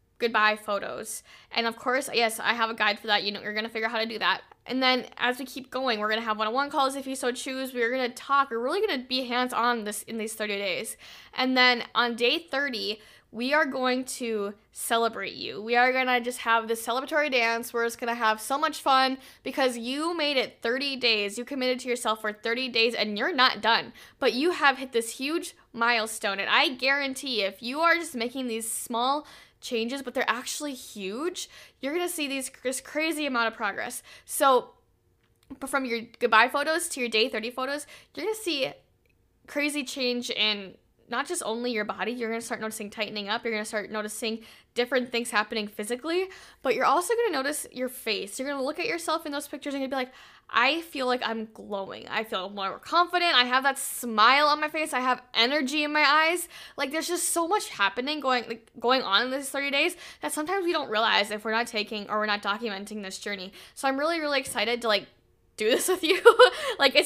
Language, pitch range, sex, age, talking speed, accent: English, 225-280 Hz, female, 10-29, 230 wpm, American